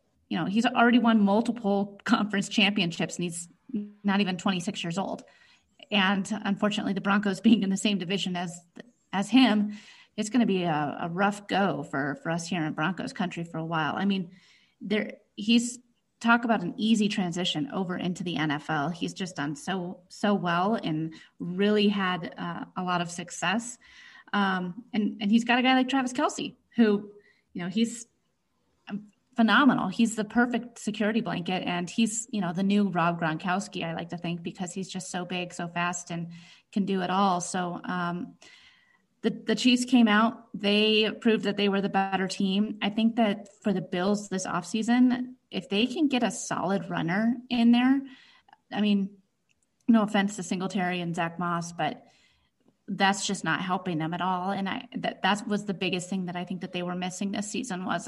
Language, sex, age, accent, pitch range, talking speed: English, female, 30-49, American, 180-225 Hz, 190 wpm